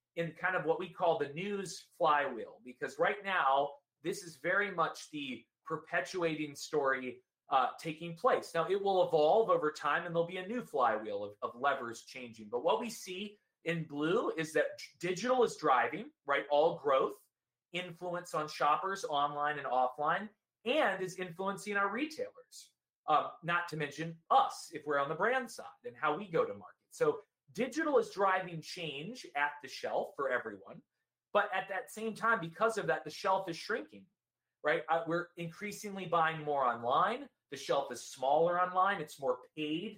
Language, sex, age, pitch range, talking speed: English, male, 30-49, 155-215 Hz, 175 wpm